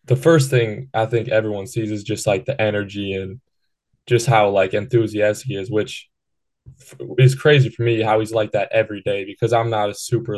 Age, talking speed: 10-29, 200 wpm